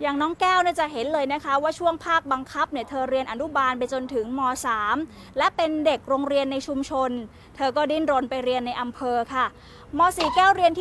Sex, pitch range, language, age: female, 255-320 Hz, Thai, 20-39